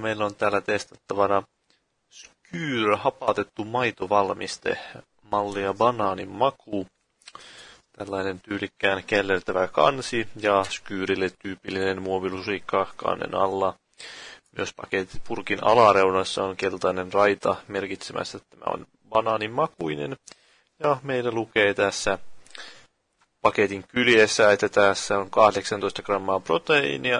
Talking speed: 95 wpm